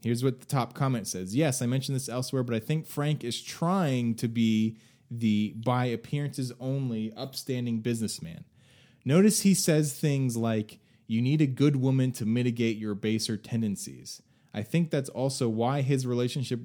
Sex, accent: male, American